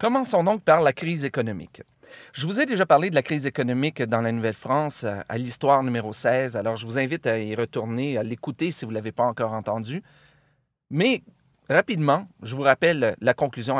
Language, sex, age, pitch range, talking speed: French, male, 40-59, 120-160 Hz, 195 wpm